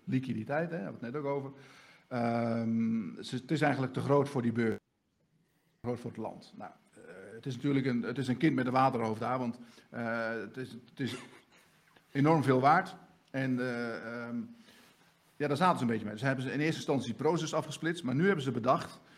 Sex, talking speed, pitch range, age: male, 220 wpm, 120-150 Hz, 50-69